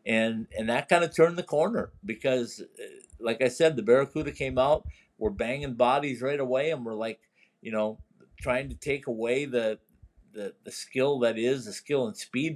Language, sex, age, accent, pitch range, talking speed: English, male, 50-69, American, 115-140 Hz, 190 wpm